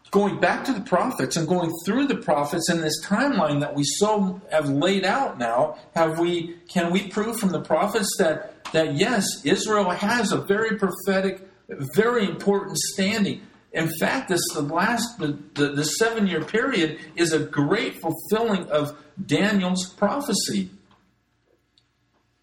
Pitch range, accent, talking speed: 150-200 Hz, American, 150 wpm